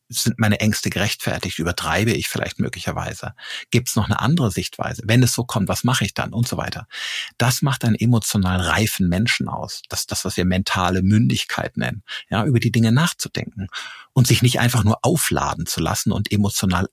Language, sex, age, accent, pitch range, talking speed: German, male, 50-69, German, 105-125 Hz, 190 wpm